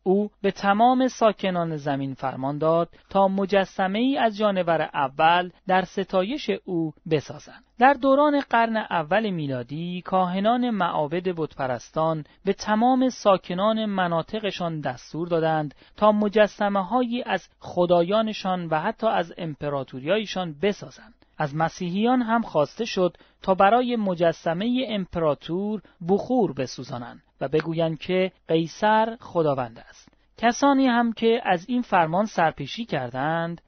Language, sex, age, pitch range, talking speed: Persian, male, 30-49, 165-220 Hz, 115 wpm